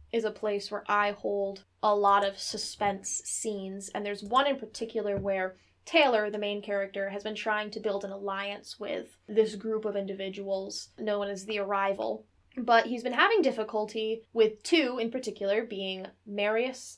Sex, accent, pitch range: female, American, 195-225 Hz